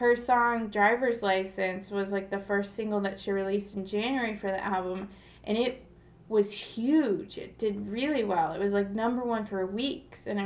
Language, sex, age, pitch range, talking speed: English, female, 20-39, 200-235 Hz, 195 wpm